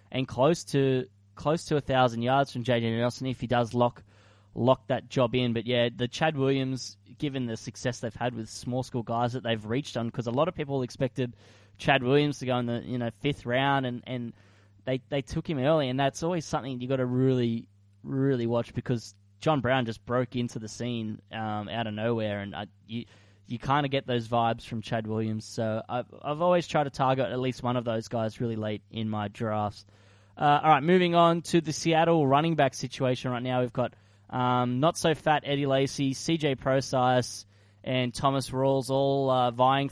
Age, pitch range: 10-29, 115-135 Hz